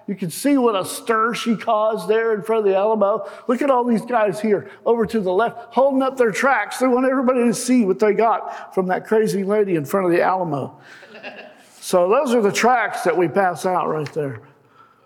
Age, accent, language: 50-69, American, English